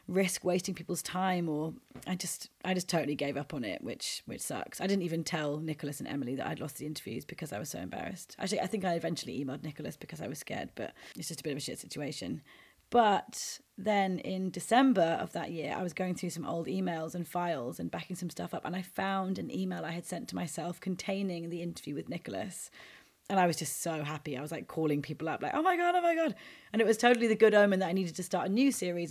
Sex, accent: female, British